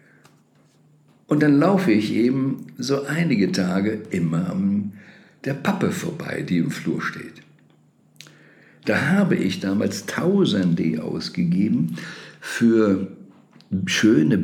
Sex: male